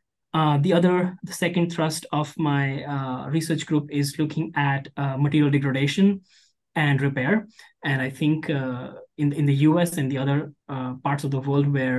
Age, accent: 20-39, Indian